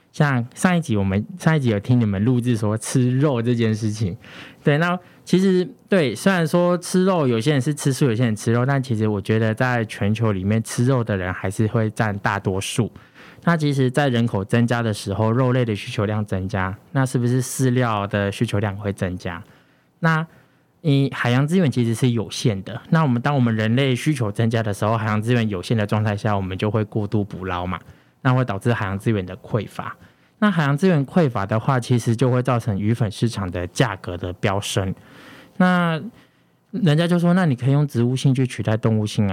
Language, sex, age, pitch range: Chinese, male, 20-39, 105-145 Hz